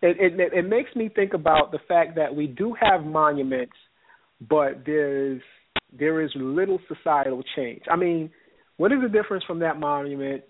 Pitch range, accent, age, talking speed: 130-165 Hz, American, 40-59, 175 wpm